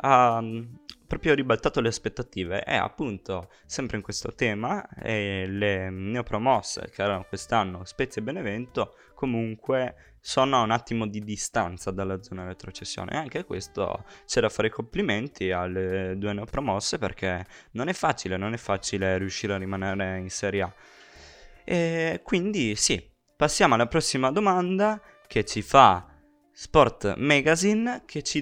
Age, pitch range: 20-39, 95-125 Hz